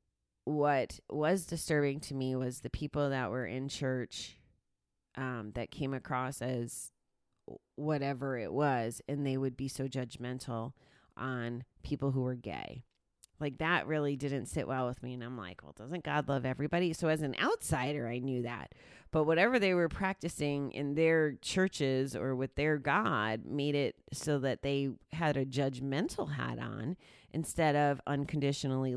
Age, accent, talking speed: 30-49, American, 165 wpm